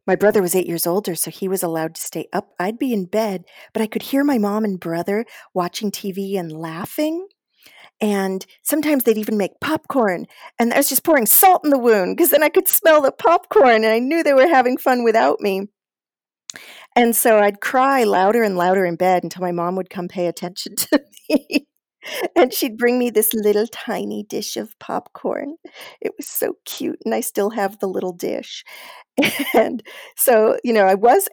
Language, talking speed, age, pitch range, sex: English, 200 wpm, 40-59, 180-240 Hz, female